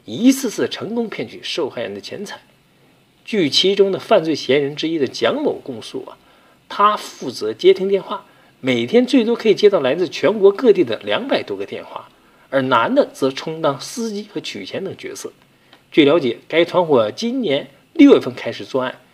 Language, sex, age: Chinese, male, 50-69